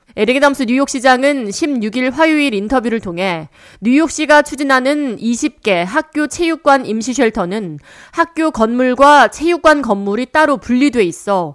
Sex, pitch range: female, 200-280 Hz